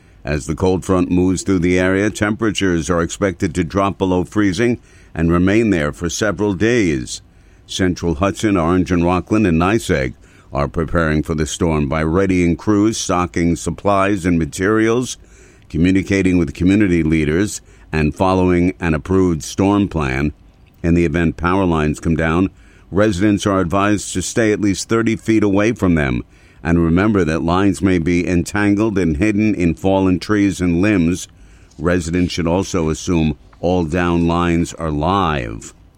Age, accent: 50-69, American